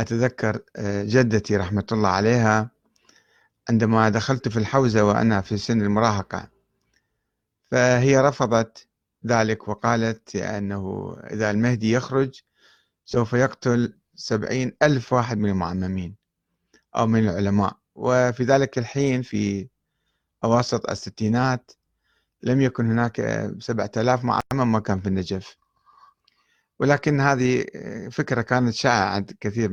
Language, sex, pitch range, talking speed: Arabic, male, 105-130 Hz, 110 wpm